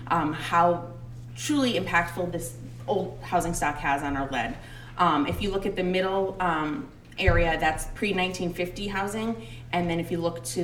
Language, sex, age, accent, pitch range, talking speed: English, female, 30-49, American, 135-180 Hz, 205 wpm